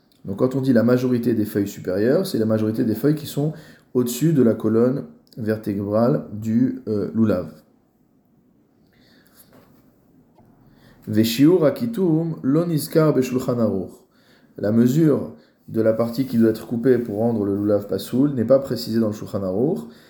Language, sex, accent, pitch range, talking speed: French, male, French, 110-135 Hz, 130 wpm